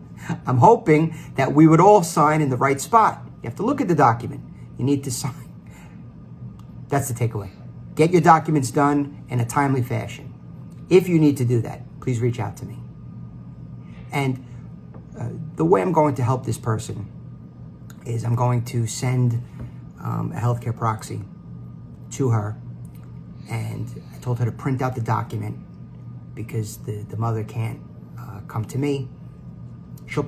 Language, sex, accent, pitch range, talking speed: English, male, American, 100-130 Hz, 165 wpm